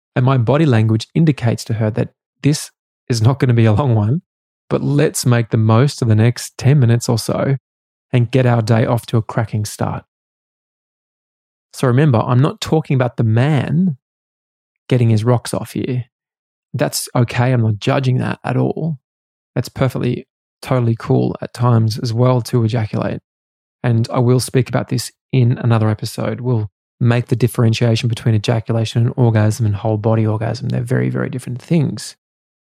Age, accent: 20-39, Australian